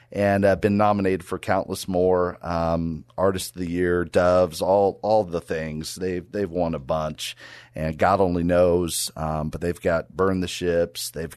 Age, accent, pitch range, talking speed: 40-59, American, 85-95 Hz, 180 wpm